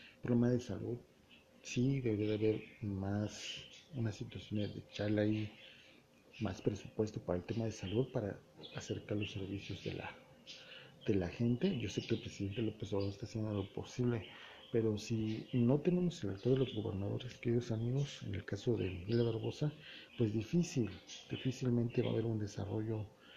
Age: 40-59